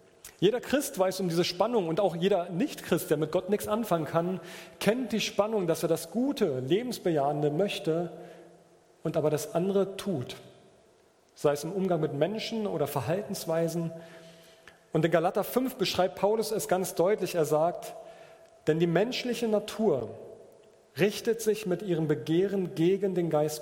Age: 40-59